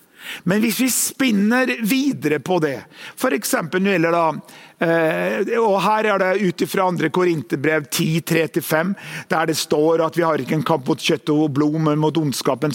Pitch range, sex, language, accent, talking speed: 150-180 Hz, male, English, Swedish, 175 wpm